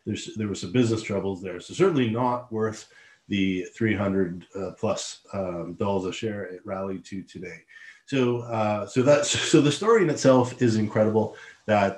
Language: English